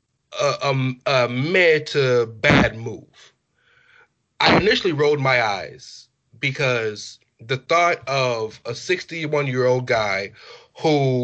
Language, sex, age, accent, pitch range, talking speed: English, male, 20-39, American, 125-155 Hz, 110 wpm